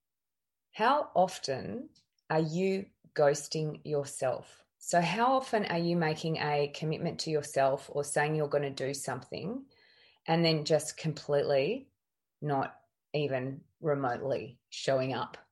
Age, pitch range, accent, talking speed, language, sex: 20-39, 140-165 Hz, Australian, 125 wpm, English, female